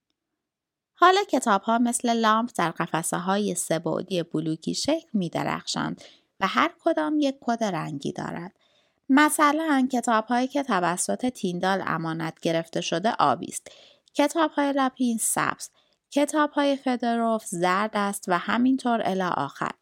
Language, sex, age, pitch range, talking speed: Persian, female, 20-39, 180-255 Hz, 125 wpm